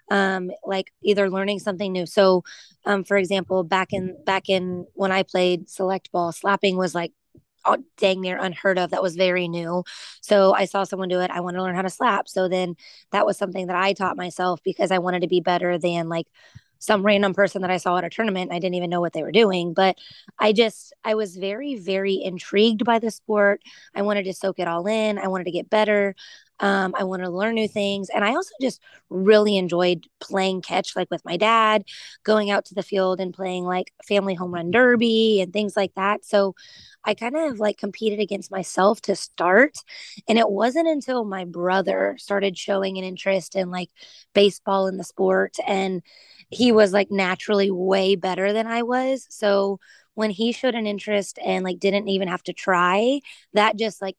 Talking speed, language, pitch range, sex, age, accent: 205 wpm, English, 185-210 Hz, female, 20-39, American